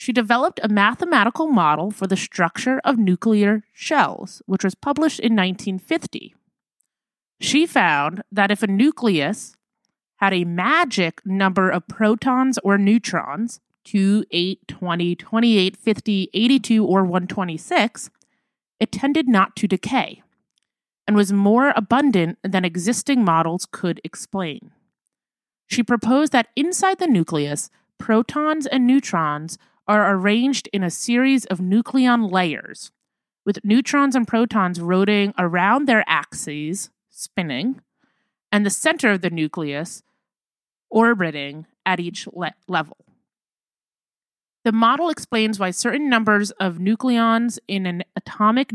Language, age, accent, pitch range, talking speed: English, 30-49, American, 185-250 Hz, 125 wpm